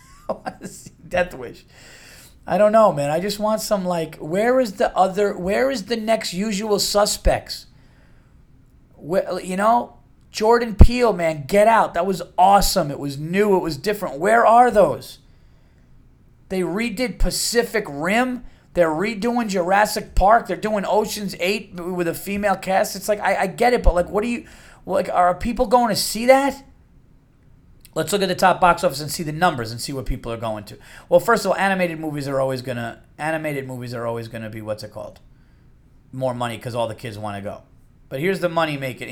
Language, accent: English, American